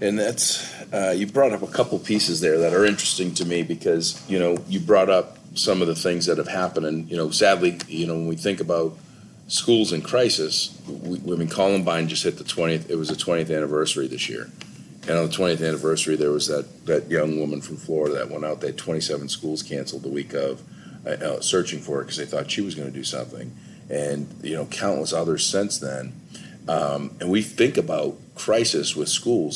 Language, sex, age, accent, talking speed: English, male, 40-59, American, 220 wpm